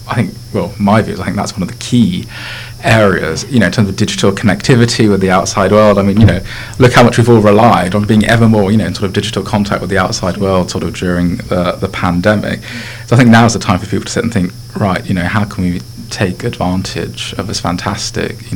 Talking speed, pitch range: 260 wpm, 90-115 Hz